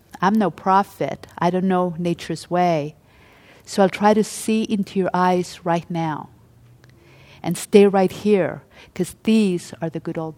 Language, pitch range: English, 165-200 Hz